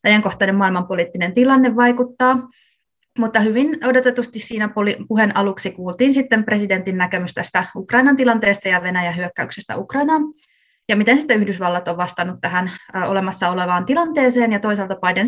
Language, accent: Finnish, native